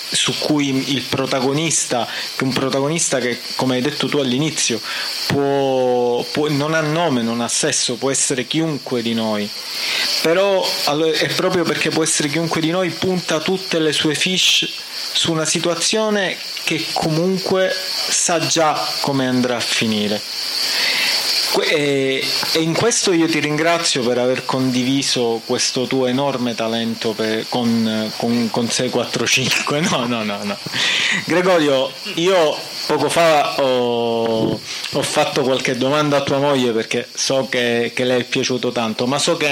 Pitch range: 125-155 Hz